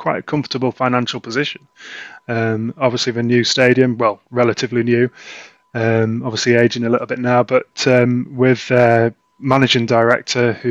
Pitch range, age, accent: 115-135 Hz, 20-39, British